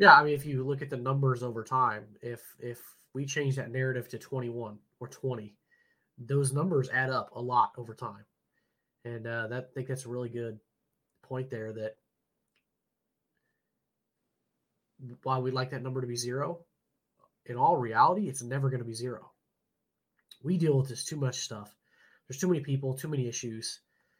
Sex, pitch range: male, 120-140 Hz